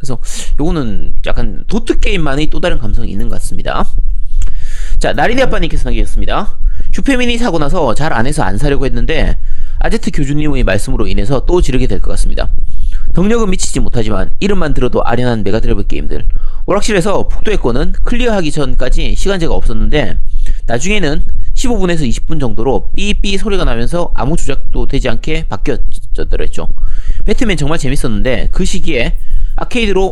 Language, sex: Korean, male